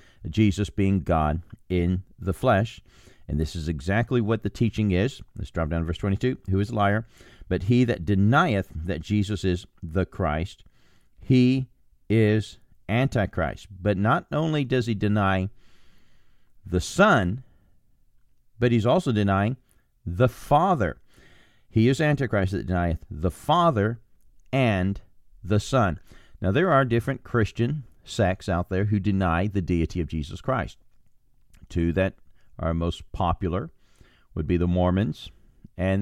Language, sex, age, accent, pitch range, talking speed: English, male, 40-59, American, 90-115 Hz, 140 wpm